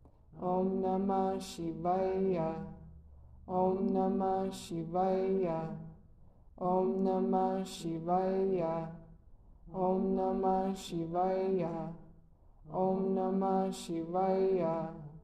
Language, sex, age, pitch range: English, male, 20-39, 170-190 Hz